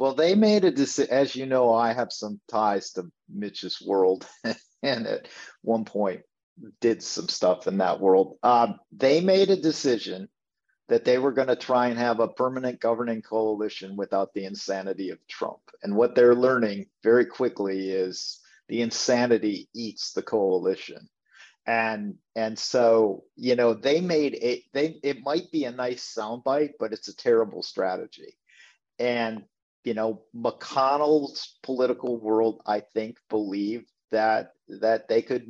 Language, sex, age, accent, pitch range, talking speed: English, male, 50-69, American, 110-140 Hz, 155 wpm